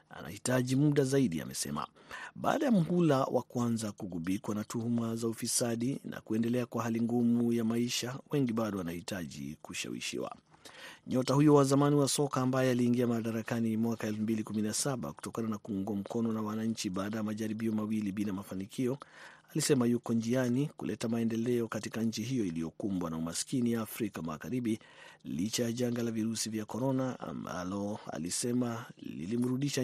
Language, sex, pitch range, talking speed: Swahili, male, 110-130 Hz, 145 wpm